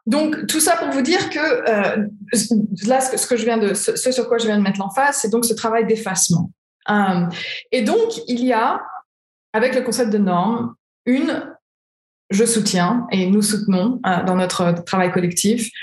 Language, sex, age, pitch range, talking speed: French, female, 20-39, 190-235 Hz, 190 wpm